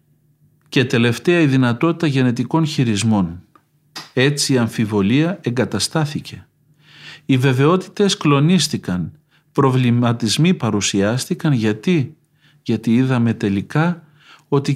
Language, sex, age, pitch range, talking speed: Greek, male, 50-69, 125-155 Hz, 80 wpm